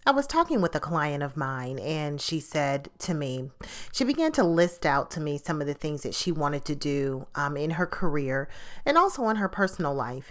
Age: 40-59